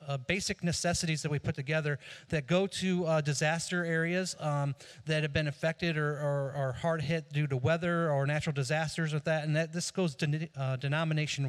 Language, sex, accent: English, male, American